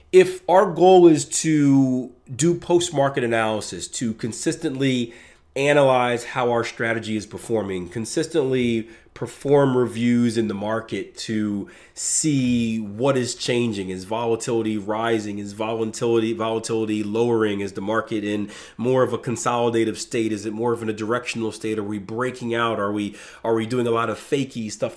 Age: 30-49